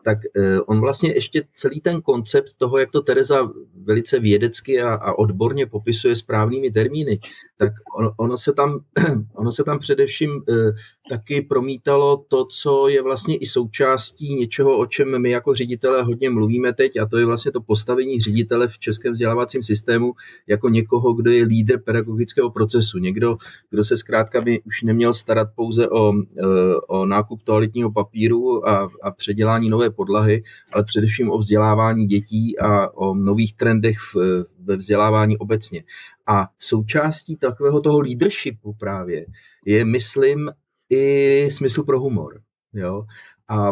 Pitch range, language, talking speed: 110-140 Hz, Czech, 145 wpm